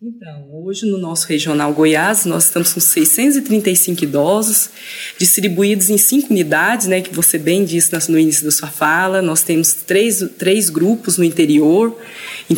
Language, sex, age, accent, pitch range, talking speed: Portuguese, female, 20-39, Brazilian, 175-225 Hz, 155 wpm